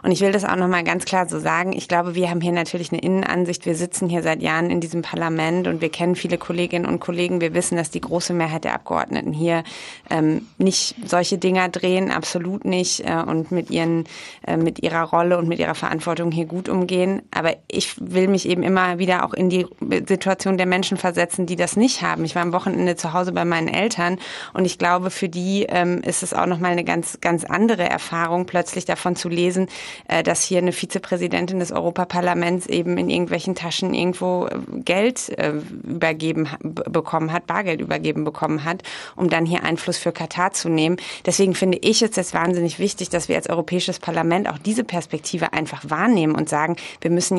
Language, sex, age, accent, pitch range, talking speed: German, female, 30-49, German, 170-185 Hz, 200 wpm